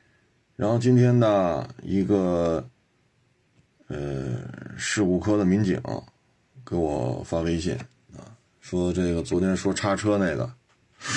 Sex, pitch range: male, 85-100 Hz